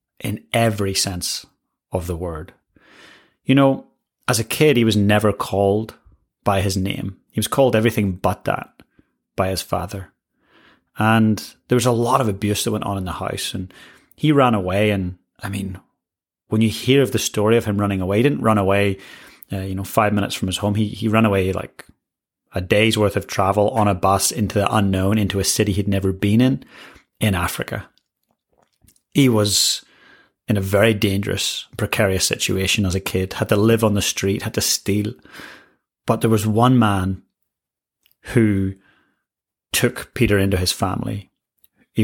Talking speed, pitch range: 180 wpm, 95-115 Hz